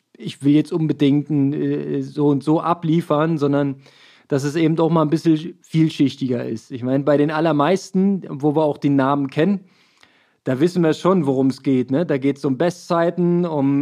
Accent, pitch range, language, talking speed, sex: German, 145-180 Hz, German, 185 wpm, male